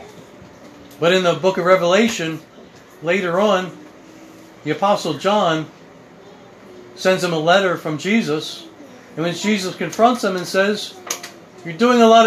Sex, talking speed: male, 135 wpm